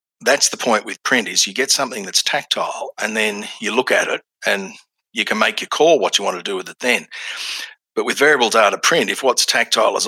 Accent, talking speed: Australian, 240 wpm